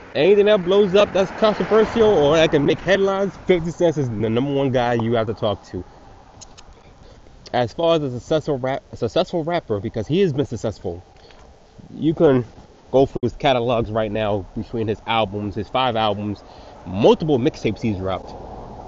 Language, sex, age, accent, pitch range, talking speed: English, male, 20-39, American, 105-145 Hz, 175 wpm